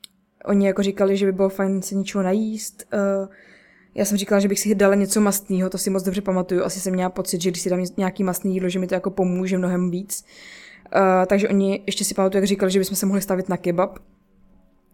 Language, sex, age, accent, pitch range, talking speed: Czech, female, 20-39, native, 190-205 Hz, 225 wpm